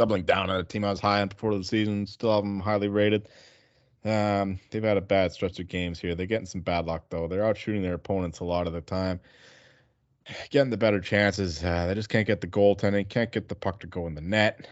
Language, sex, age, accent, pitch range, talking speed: English, male, 20-39, American, 90-105 Hz, 255 wpm